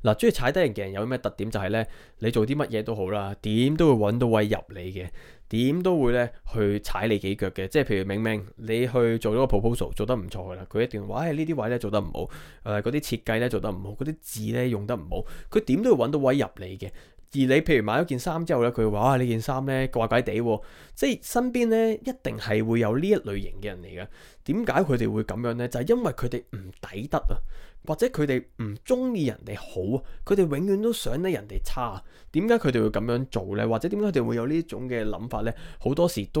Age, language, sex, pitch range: 20-39, Chinese, male, 105-130 Hz